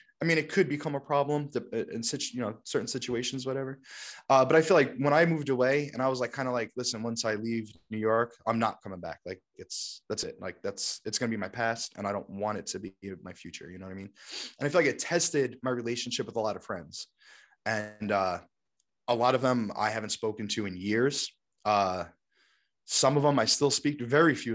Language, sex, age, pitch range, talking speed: English, male, 20-39, 115-145 Hz, 245 wpm